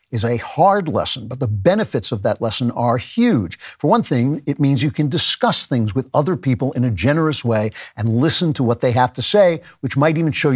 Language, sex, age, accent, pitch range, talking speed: English, male, 50-69, American, 115-155 Hz, 225 wpm